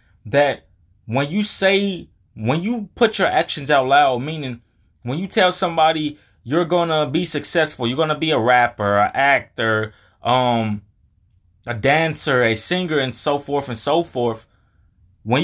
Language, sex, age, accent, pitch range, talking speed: English, male, 20-39, American, 110-160 Hz, 150 wpm